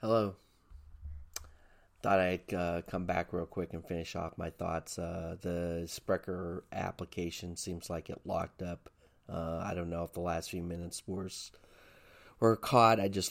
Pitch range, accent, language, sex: 85-95 Hz, American, English, male